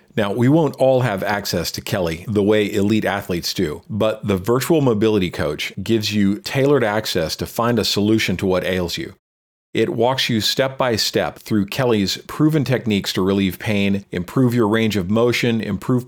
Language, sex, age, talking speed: English, male, 40-59, 185 wpm